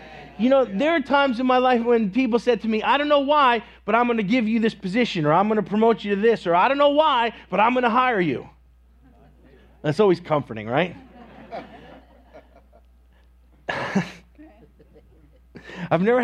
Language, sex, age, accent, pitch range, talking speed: English, male, 30-49, American, 170-250 Hz, 185 wpm